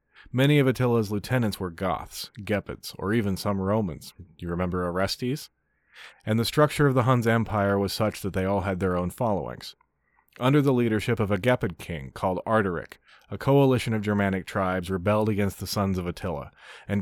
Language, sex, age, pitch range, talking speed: English, male, 30-49, 90-110 Hz, 180 wpm